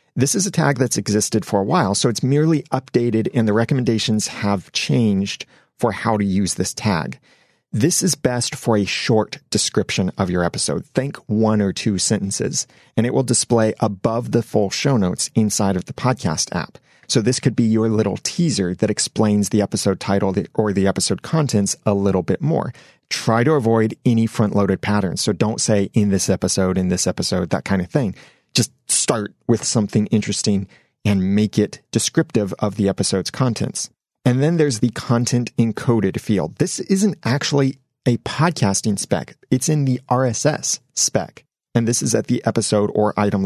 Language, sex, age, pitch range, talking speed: English, male, 40-59, 100-125 Hz, 180 wpm